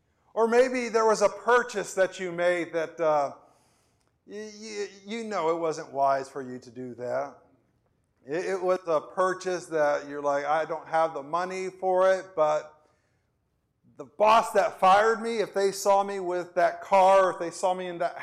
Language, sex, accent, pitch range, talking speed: English, male, American, 155-200 Hz, 185 wpm